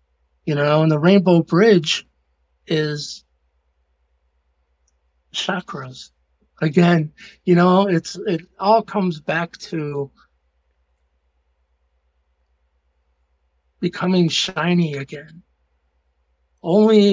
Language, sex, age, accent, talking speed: English, male, 60-79, American, 75 wpm